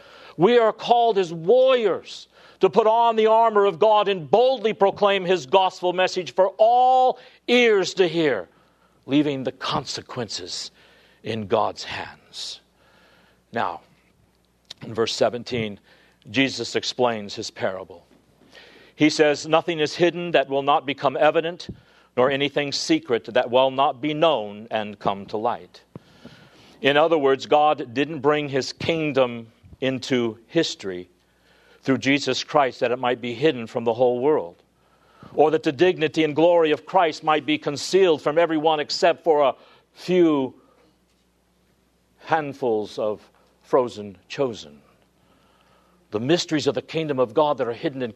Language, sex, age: English, male, 50-69